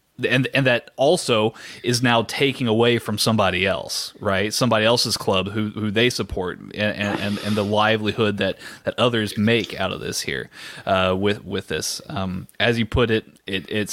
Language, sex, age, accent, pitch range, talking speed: English, male, 20-39, American, 100-120 Hz, 185 wpm